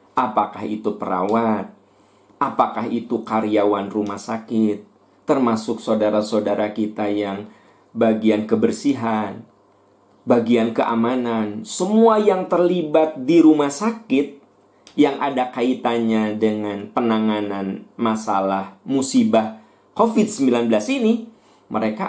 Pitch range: 110-175 Hz